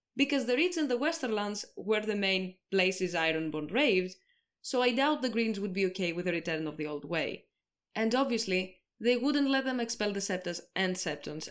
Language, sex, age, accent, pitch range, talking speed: English, female, 20-39, Spanish, 175-260 Hz, 200 wpm